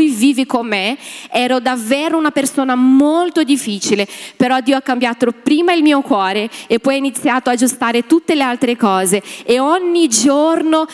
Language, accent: Italian, native